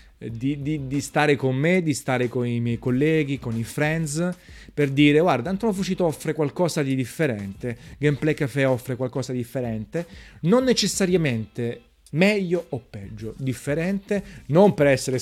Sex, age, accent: male, 30-49, native